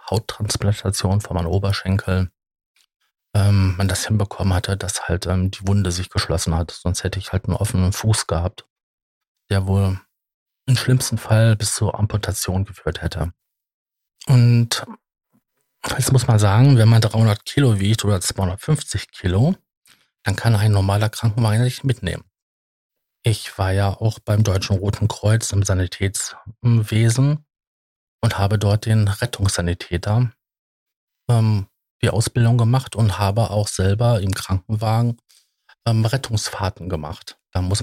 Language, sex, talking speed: German, male, 135 wpm